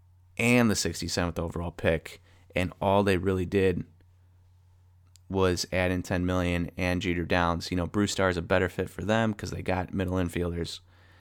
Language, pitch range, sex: English, 90-100 Hz, male